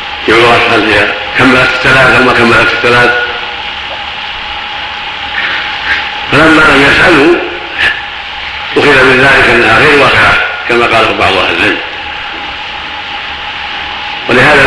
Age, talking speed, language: 50-69, 100 wpm, Arabic